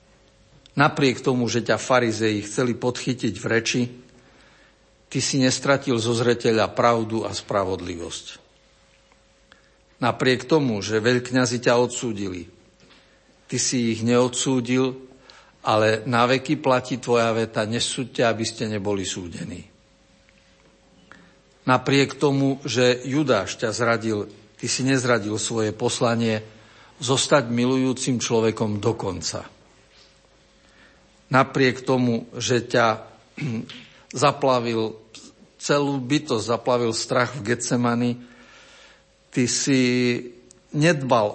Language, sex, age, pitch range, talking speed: Slovak, male, 60-79, 110-130 Hz, 95 wpm